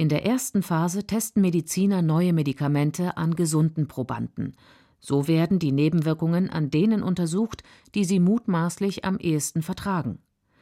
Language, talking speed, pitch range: German, 135 wpm, 150-200 Hz